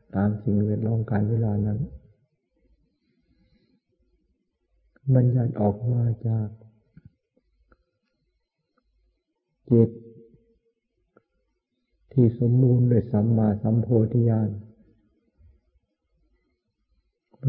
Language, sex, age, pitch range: Thai, male, 60-79, 105-120 Hz